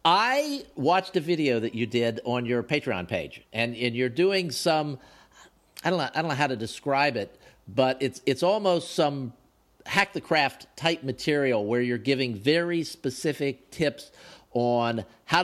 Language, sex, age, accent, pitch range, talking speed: English, male, 50-69, American, 125-160 Hz, 155 wpm